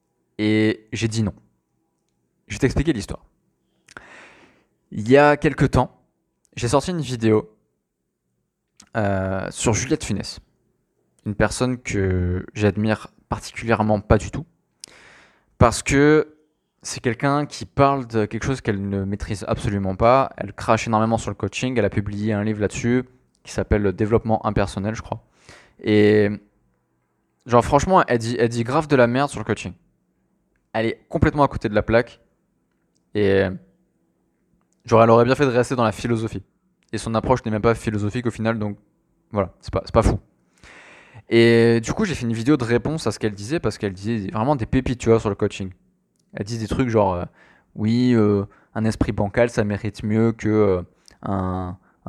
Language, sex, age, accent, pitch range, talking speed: French, male, 20-39, French, 100-120 Hz, 175 wpm